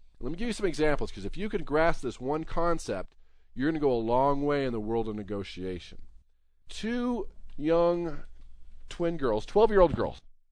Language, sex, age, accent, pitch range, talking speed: English, male, 40-59, American, 120-190 Hz, 185 wpm